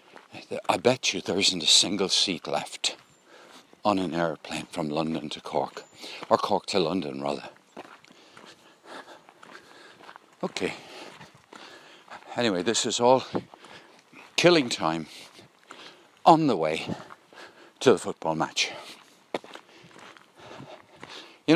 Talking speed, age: 100 wpm, 60-79